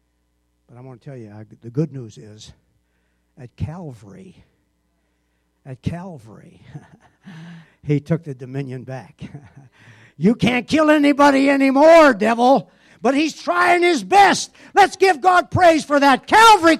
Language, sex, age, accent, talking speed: English, male, 60-79, American, 130 wpm